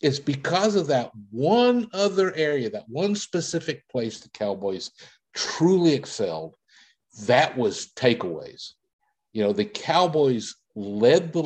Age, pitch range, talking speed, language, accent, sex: 50-69, 120-165 Hz, 125 wpm, English, American, male